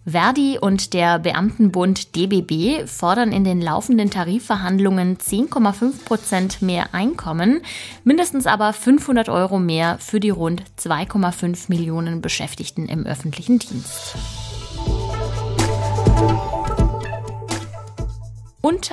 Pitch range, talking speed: 160-220 Hz, 90 wpm